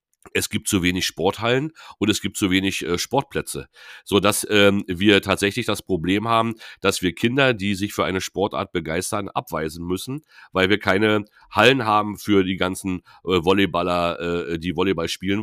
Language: German